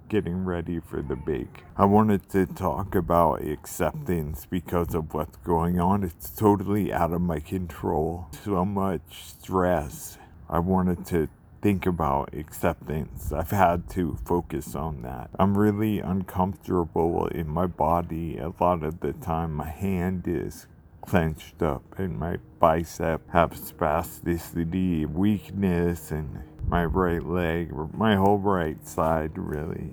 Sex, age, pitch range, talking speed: male, 40-59, 80-95 Hz, 135 wpm